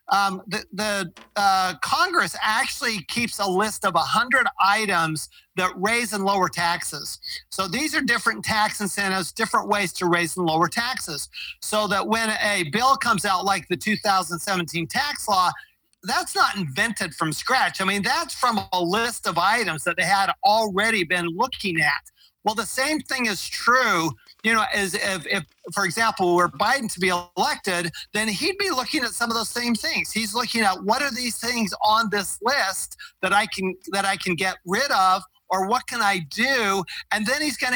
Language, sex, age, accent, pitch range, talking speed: English, male, 50-69, American, 185-235 Hz, 190 wpm